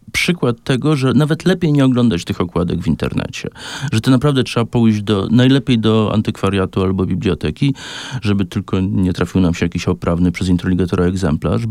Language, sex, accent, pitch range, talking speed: Polish, male, native, 105-135 Hz, 170 wpm